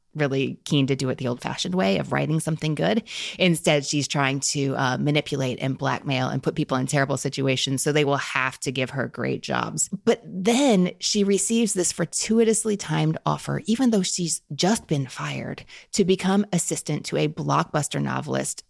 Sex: female